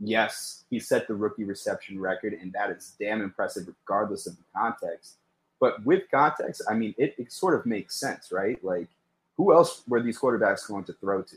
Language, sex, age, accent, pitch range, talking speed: English, male, 30-49, American, 95-120 Hz, 200 wpm